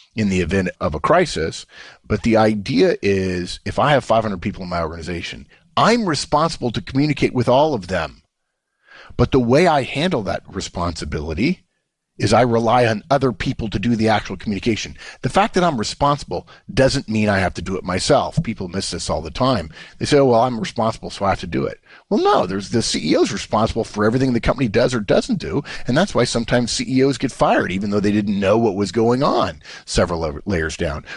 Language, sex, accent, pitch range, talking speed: English, male, American, 85-120 Hz, 210 wpm